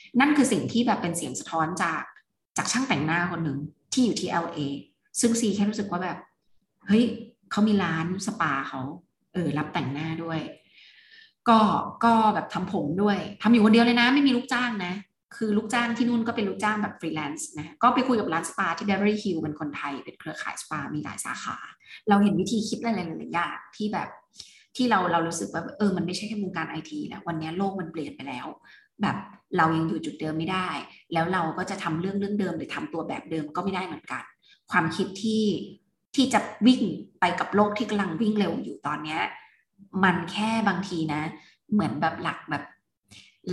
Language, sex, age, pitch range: Thai, female, 20-39, 170-220 Hz